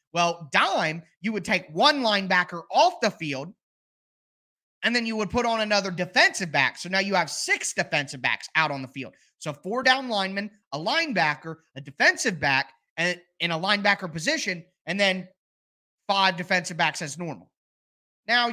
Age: 30-49